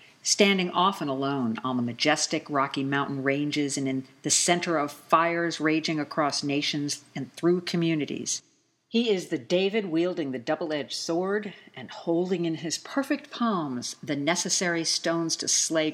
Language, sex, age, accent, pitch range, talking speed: English, female, 50-69, American, 135-175 Hz, 150 wpm